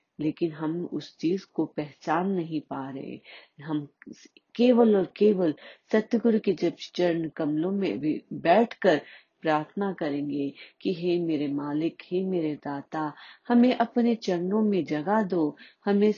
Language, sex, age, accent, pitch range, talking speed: Hindi, female, 30-49, native, 155-205 Hz, 140 wpm